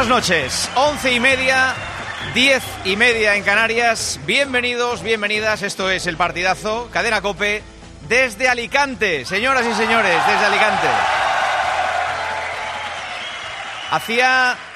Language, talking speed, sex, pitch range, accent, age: Spanish, 105 wpm, male, 145-215 Hz, Spanish, 30-49